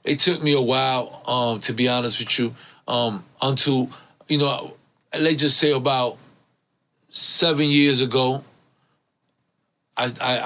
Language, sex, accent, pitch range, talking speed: English, male, American, 120-145 Hz, 130 wpm